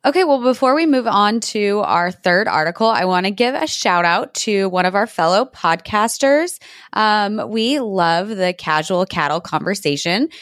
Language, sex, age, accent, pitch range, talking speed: English, female, 20-39, American, 170-225 Hz, 175 wpm